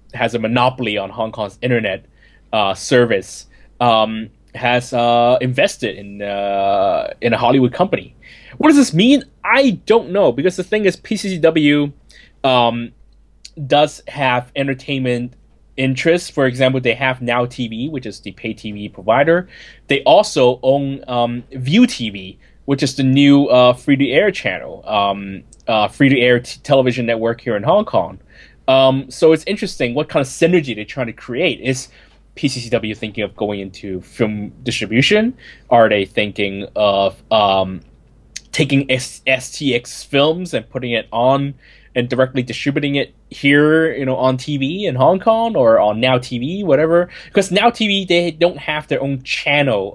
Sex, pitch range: male, 115-150 Hz